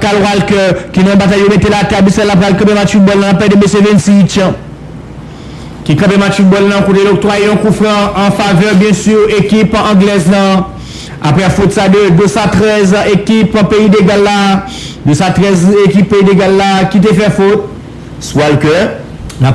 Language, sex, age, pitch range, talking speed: English, male, 50-69, 185-205 Hz, 185 wpm